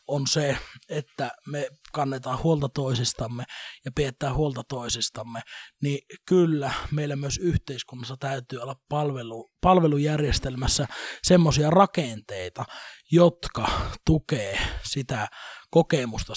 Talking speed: 95 wpm